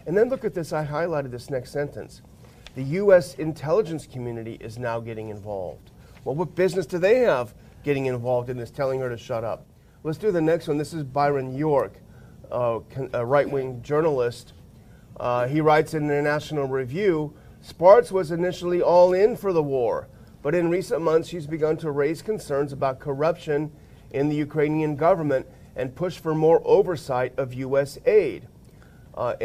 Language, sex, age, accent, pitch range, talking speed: English, male, 40-59, American, 125-160 Hz, 170 wpm